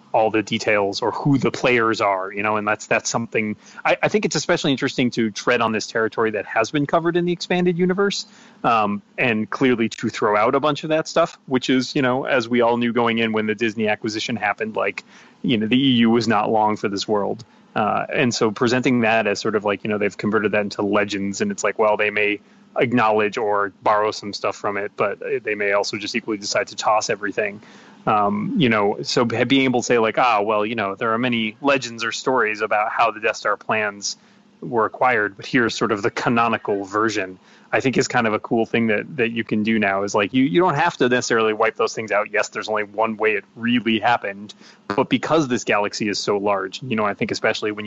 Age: 30-49